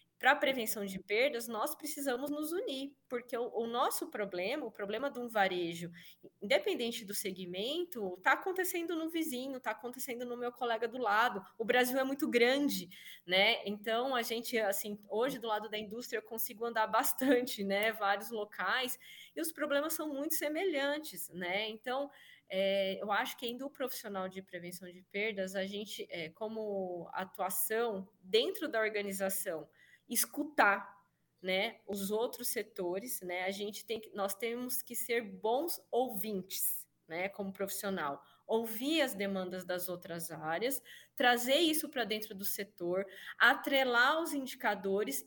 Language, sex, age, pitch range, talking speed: Portuguese, female, 20-39, 195-265 Hz, 145 wpm